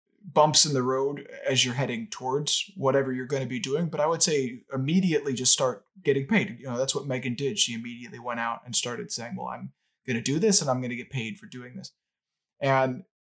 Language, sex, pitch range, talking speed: English, male, 120-150 Hz, 235 wpm